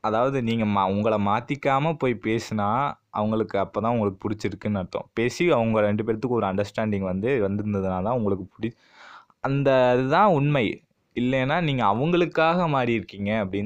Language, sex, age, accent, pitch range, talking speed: Tamil, male, 20-39, native, 100-125 Hz, 130 wpm